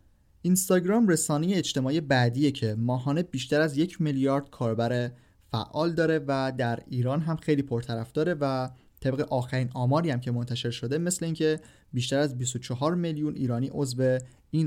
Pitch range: 120-150 Hz